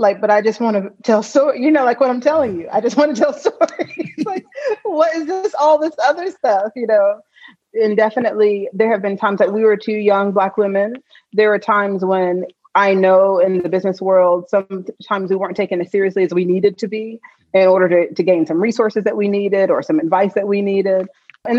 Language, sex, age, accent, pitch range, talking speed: English, female, 30-49, American, 190-225 Hz, 230 wpm